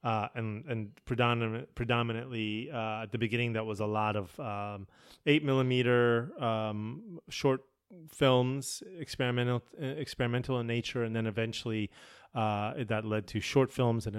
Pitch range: 105-125 Hz